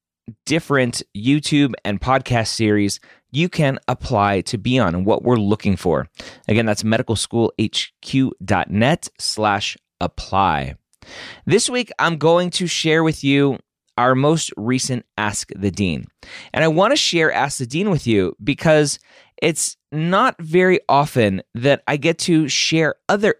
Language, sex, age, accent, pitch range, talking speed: English, male, 20-39, American, 105-140 Hz, 145 wpm